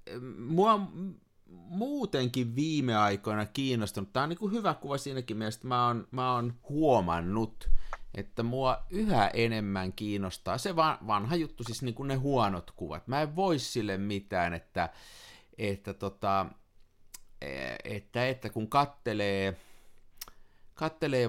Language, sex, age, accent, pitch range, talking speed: Finnish, male, 50-69, native, 100-135 Hz, 120 wpm